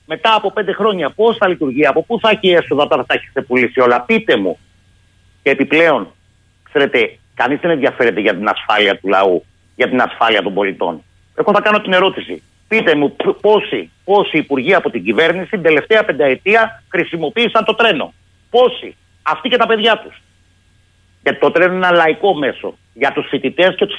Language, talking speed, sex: Greek, 185 wpm, male